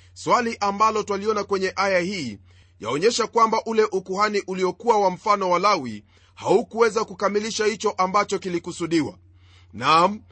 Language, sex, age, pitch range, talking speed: Swahili, male, 30-49, 140-215 Hz, 120 wpm